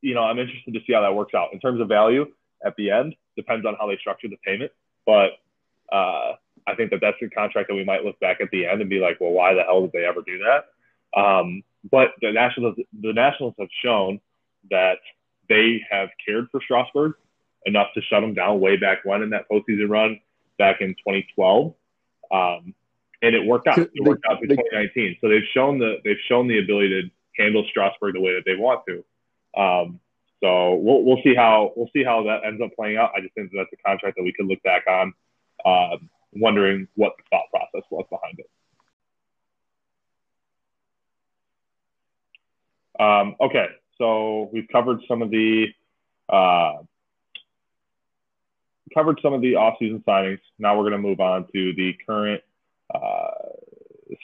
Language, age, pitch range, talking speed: English, 20-39, 95-120 Hz, 185 wpm